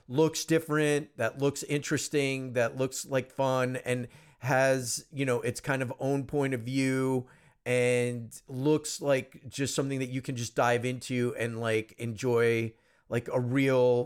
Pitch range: 125-160 Hz